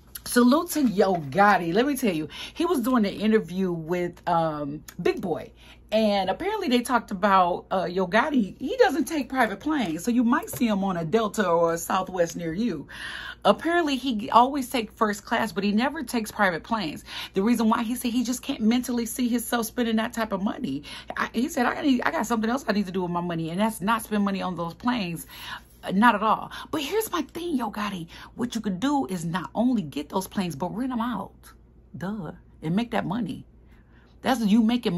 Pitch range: 185-245 Hz